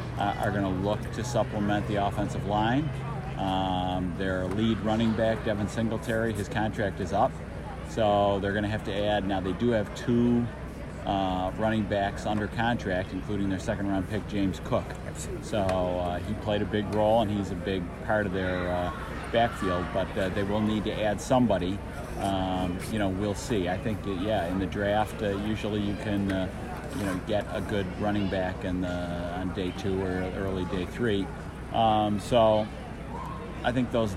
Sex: male